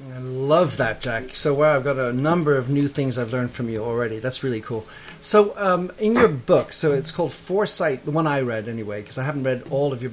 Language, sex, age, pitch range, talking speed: English, male, 40-59, 125-155 Hz, 250 wpm